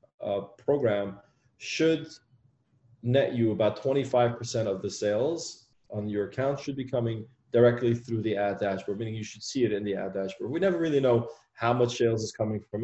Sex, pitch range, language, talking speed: male, 105-125 Hz, English, 185 wpm